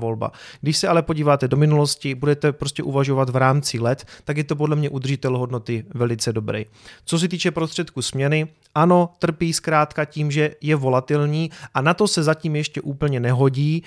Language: Czech